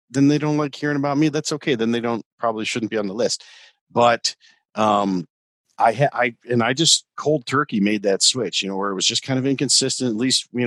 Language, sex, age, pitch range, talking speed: English, male, 50-69, 100-135 Hz, 240 wpm